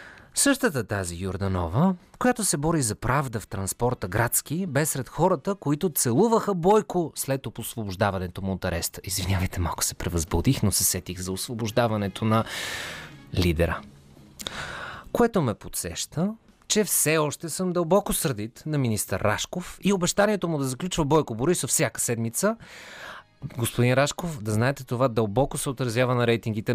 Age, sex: 30-49, male